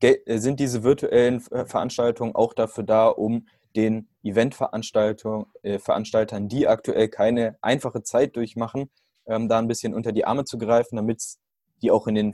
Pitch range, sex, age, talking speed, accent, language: 110-130 Hz, male, 20-39, 145 wpm, German, German